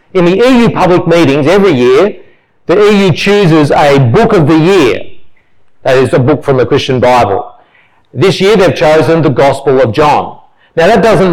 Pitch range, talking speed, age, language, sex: 140-185 Hz, 180 wpm, 40-59, English, male